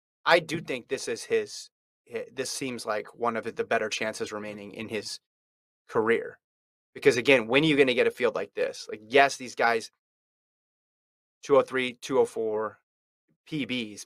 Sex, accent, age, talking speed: male, American, 30-49, 160 wpm